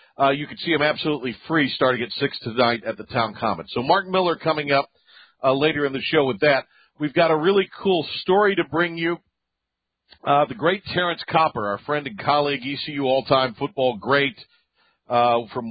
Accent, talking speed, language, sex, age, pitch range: American, 195 wpm, English, male, 50-69, 120-150 Hz